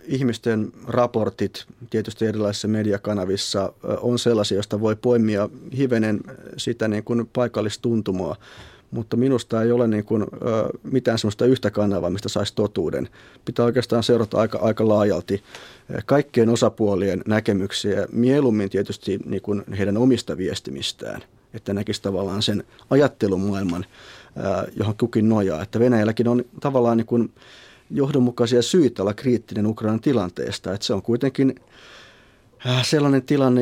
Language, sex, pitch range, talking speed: Finnish, male, 105-125 Hz, 125 wpm